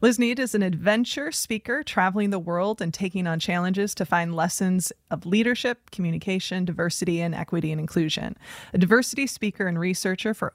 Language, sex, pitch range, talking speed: English, female, 170-230 Hz, 170 wpm